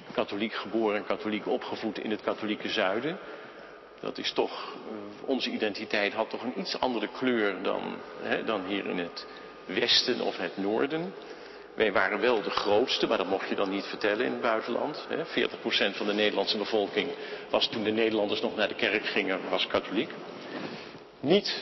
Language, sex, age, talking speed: Dutch, male, 50-69, 175 wpm